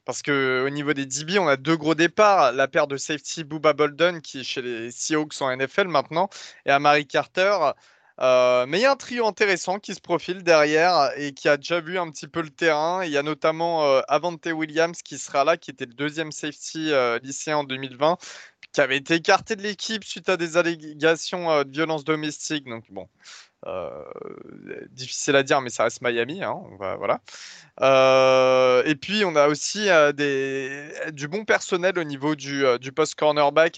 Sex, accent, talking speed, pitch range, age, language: male, French, 205 wpm, 140-170 Hz, 20-39, French